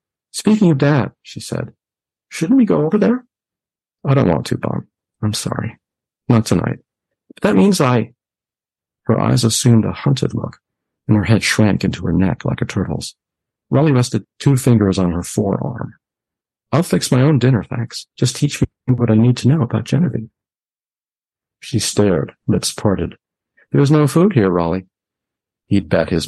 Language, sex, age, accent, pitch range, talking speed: English, male, 50-69, American, 95-140 Hz, 170 wpm